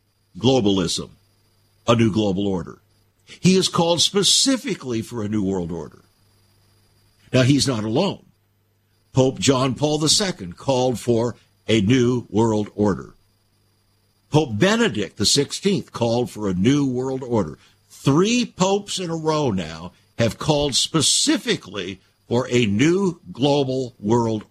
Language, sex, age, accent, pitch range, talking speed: English, male, 60-79, American, 100-140 Hz, 125 wpm